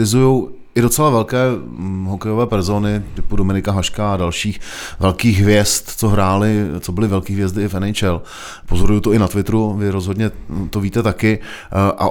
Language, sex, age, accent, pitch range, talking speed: Czech, male, 30-49, native, 95-115 Hz, 160 wpm